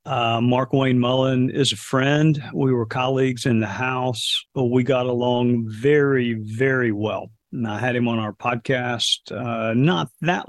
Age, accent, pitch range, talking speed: 50-69, American, 125-155 Hz, 170 wpm